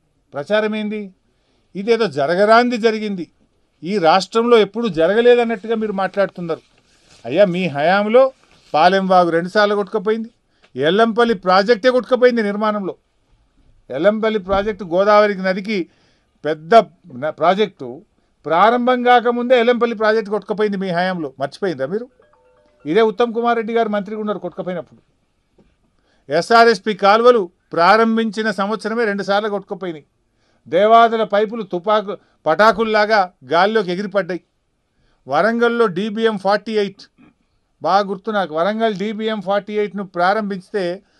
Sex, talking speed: male, 100 wpm